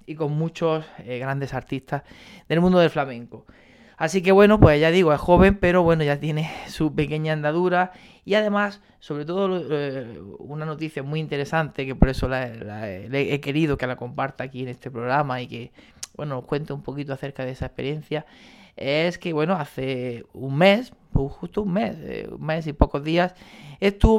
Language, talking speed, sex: Spanish, 190 wpm, male